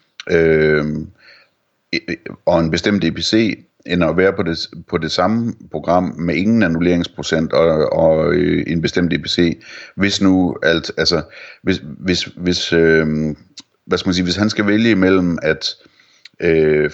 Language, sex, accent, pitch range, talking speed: Danish, male, native, 80-95 Hz, 130 wpm